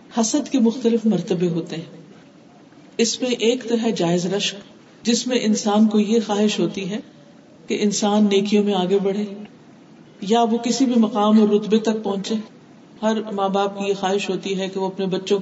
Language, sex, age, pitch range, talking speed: Urdu, female, 50-69, 200-275 Hz, 185 wpm